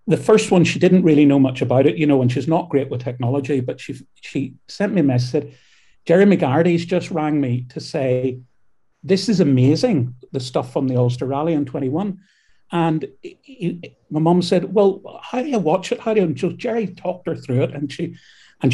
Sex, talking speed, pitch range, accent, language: male, 220 wpm, 130-165 Hz, British, English